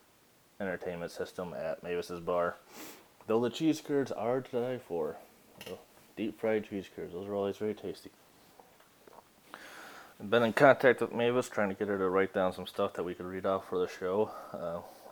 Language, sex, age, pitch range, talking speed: English, male, 20-39, 95-115 Hz, 185 wpm